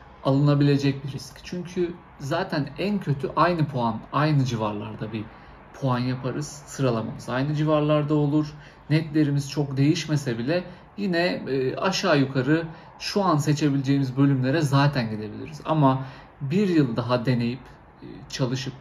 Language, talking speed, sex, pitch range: Turkish, 120 wpm, male, 125-155 Hz